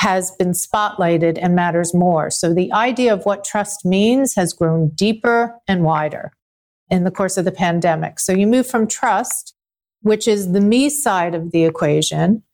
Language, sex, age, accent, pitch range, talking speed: English, female, 50-69, American, 185-225 Hz, 175 wpm